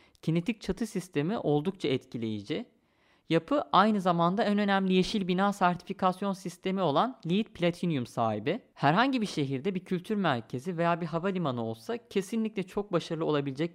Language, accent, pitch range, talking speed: Turkish, native, 145-210 Hz, 140 wpm